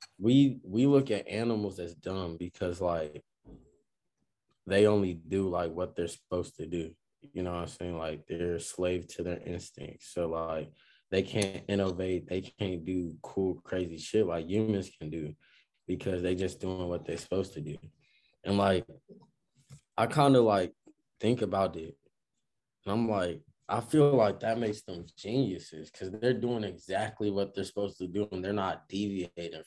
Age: 20-39